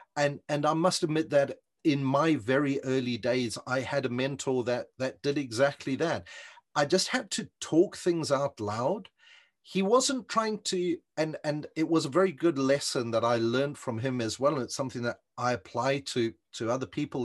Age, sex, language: 40-59, male, English